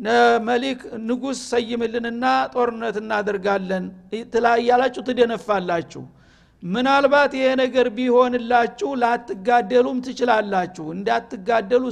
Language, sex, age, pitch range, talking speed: Amharic, male, 60-79, 210-255 Hz, 85 wpm